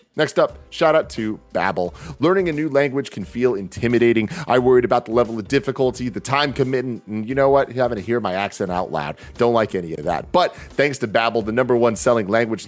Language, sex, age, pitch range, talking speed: English, male, 30-49, 105-135 Hz, 225 wpm